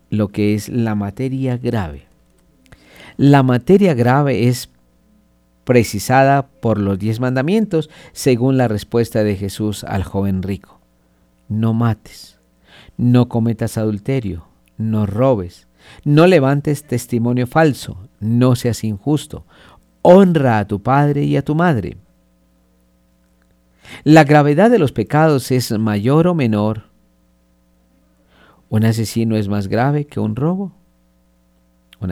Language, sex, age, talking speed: Spanish, male, 50-69, 120 wpm